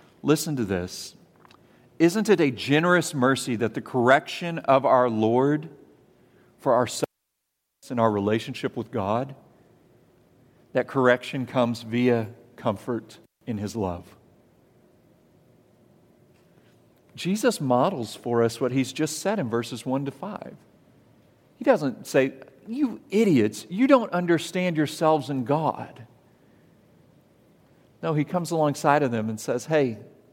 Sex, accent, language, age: male, American, English, 50-69